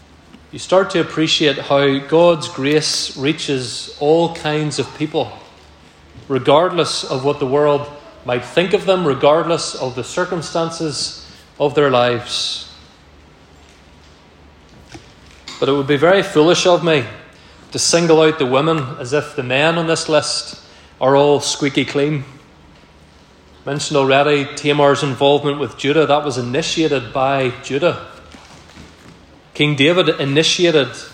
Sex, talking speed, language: male, 130 wpm, English